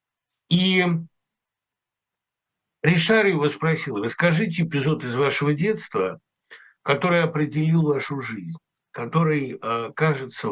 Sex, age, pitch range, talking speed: male, 60-79, 135-190 Hz, 85 wpm